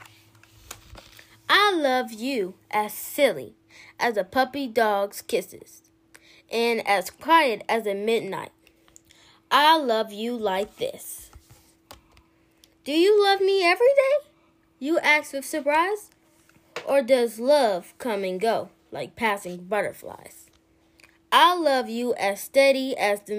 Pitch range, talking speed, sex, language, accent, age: 205-280 Hz, 120 wpm, female, English, American, 10-29